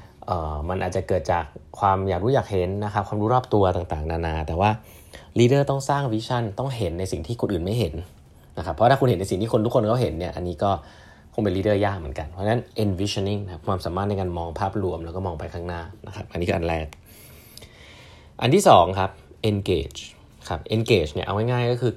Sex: male